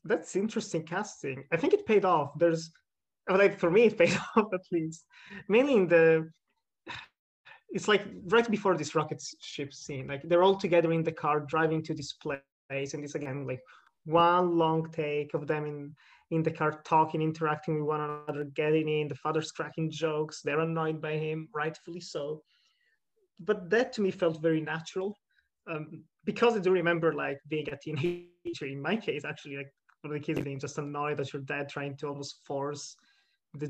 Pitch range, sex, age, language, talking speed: 150-180 Hz, male, 20-39, English, 185 wpm